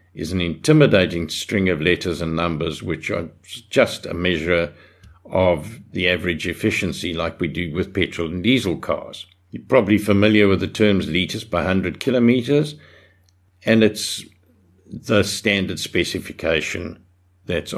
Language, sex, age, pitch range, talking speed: English, male, 60-79, 85-105 Hz, 140 wpm